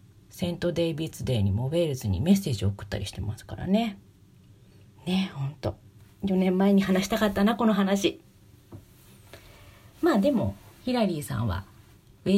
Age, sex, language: 40-59, female, Japanese